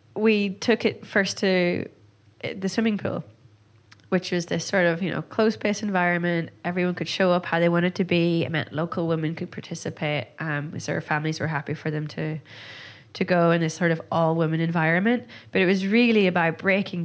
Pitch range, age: 150-180 Hz, 20-39